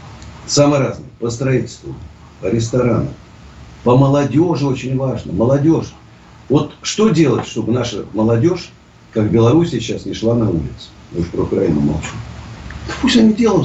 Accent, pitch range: native, 110-155 Hz